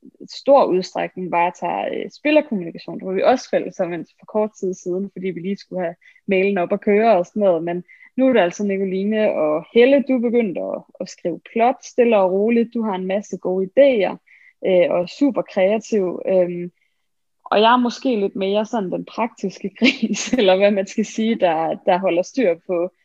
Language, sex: Danish, female